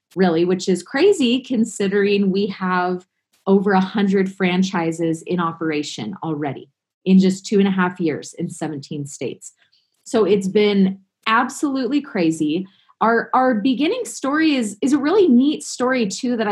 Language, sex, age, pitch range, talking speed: English, female, 20-39, 175-215 Hz, 150 wpm